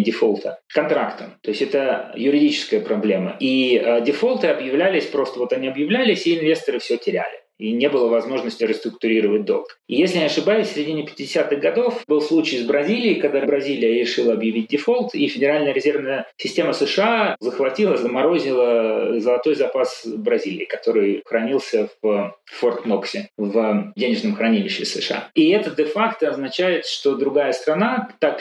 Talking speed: 145 wpm